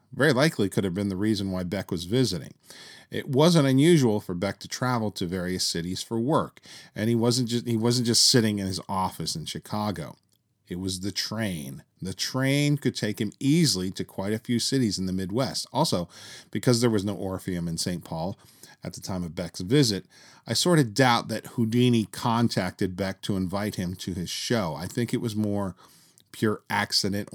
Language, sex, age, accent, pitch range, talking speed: English, male, 40-59, American, 95-125 Hz, 195 wpm